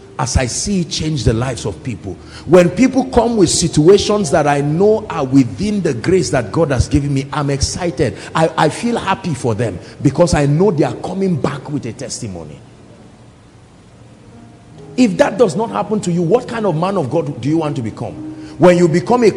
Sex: male